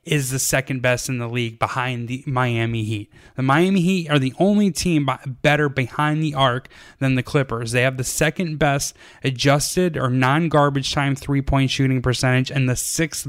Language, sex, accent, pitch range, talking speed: English, male, American, 130-155 Hz, 180 wpm